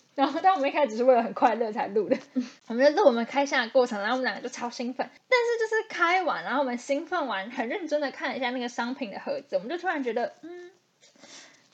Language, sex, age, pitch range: Chinese, female, 10-29, 230-300 Hz